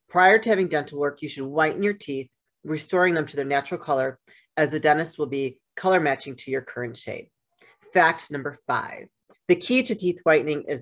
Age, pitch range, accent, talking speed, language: 40-59, 145-190 Hz, American, 200 wpm, English